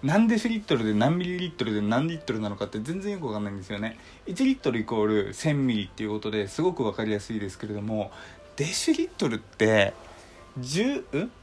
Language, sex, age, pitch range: Japanese, male, 20-39, 105-160 Hz